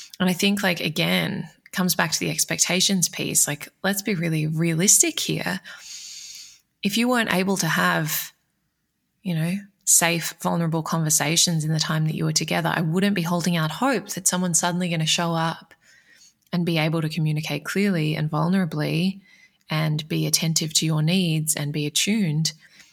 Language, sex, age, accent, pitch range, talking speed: English, female, 20-39, Australian, 155-180 Hz, 170 wpm